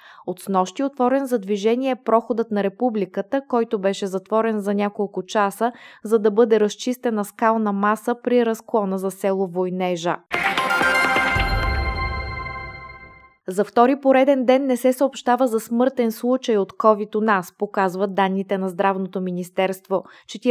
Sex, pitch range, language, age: female, 195-240 Hz, Bulgarian, 20-39